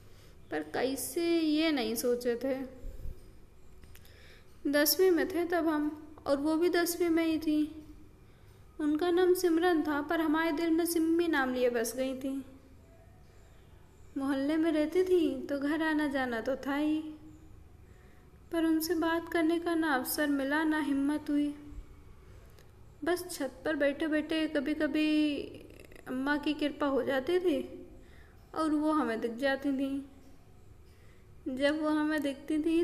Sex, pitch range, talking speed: female, 240-330 Hz, 145 wpm